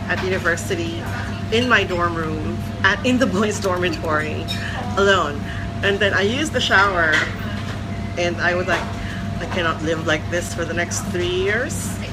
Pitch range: 100-115 Hz